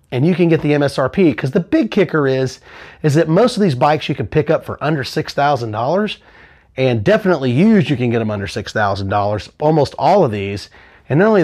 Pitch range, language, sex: 125-175 Hz, English, male